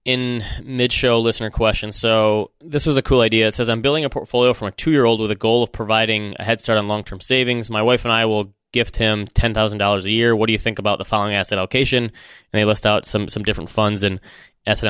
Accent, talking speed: American, 240 wpm